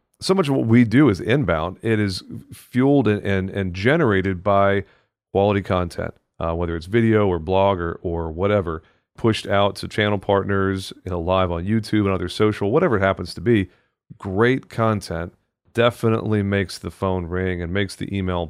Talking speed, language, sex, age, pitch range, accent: 170 wpm, English, male, 40-59, 95-115 Hz, American